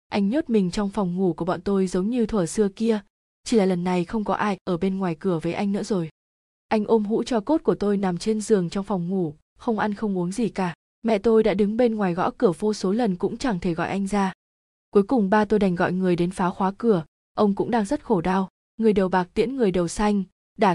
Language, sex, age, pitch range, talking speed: Vietnamese, female, 20-39, 185-220 Hz, 260 wpm